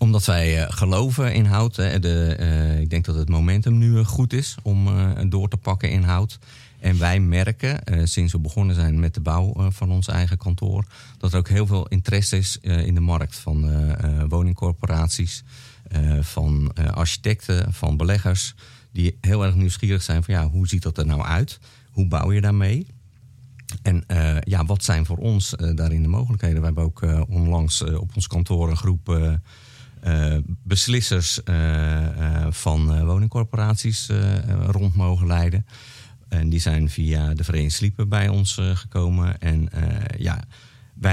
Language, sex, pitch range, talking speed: Dutch, male, 85-110 Hz, 180 wpm